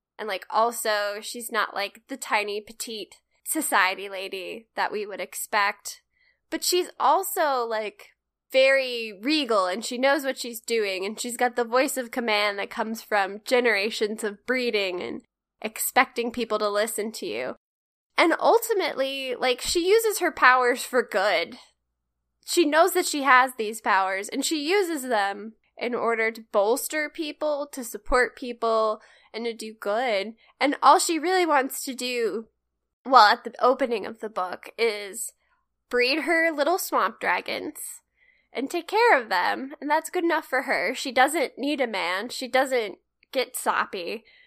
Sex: female